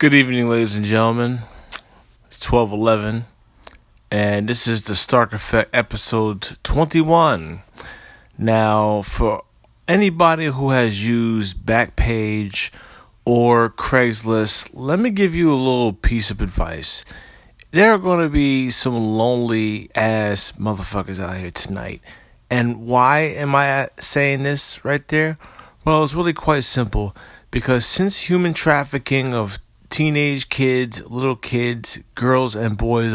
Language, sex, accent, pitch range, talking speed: English, male, American, 105-135 Hz, 125 wpm